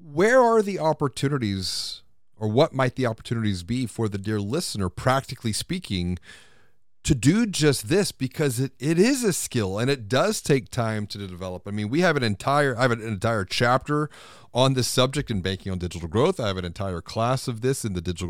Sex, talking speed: male, 205 wpm